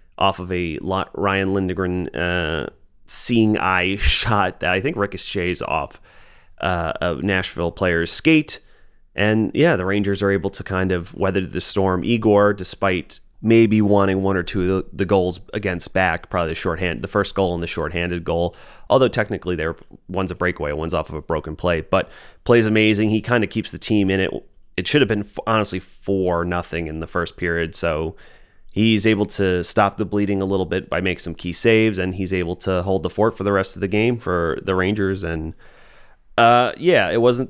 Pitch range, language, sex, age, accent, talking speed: 90-110 Hz, English, male, 30-49, American, 195 wpm